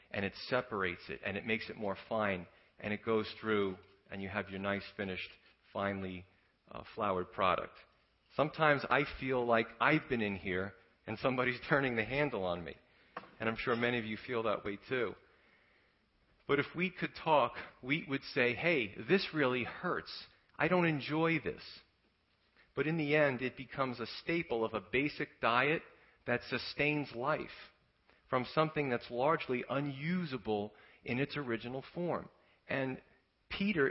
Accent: American